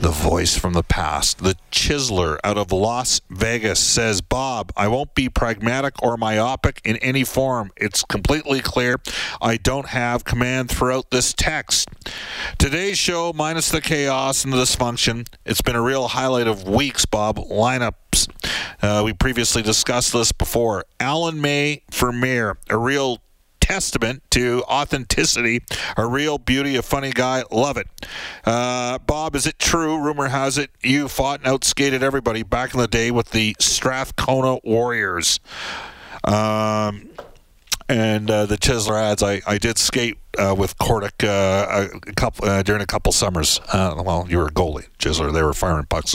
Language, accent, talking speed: English, American, 165 wpm